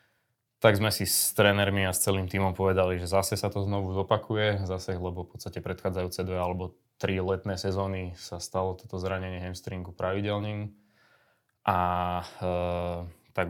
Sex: male